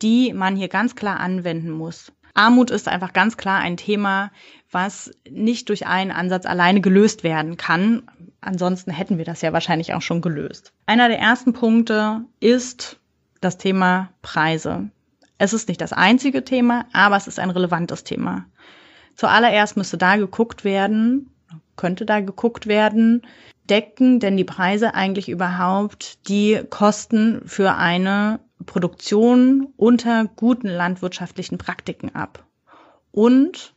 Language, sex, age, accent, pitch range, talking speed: German, female, 30-49, German, 185-230 Hz, 140 wpm